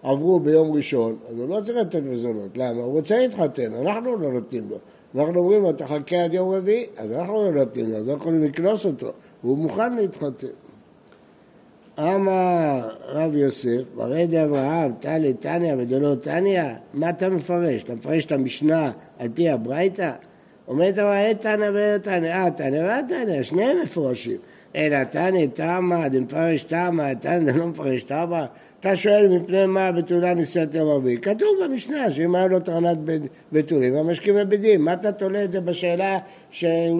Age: 60-79